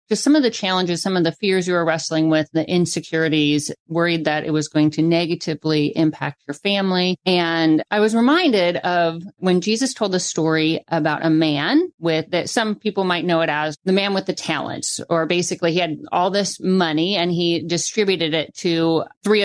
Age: 40-59